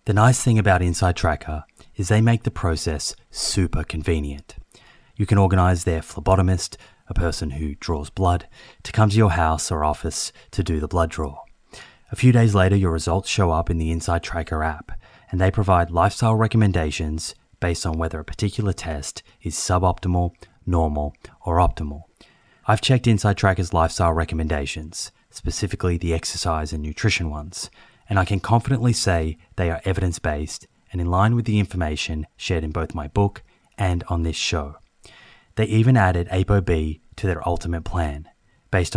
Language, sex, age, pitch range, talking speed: English, male, 30-49, 80-100 Hz, 165 wpm